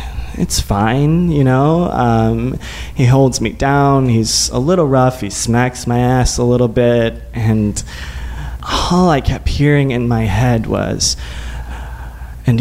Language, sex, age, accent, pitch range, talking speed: English, male, 20-39, American, 110-180 Hz, 140 wpm